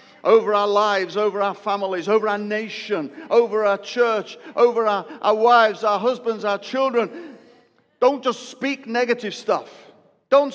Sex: male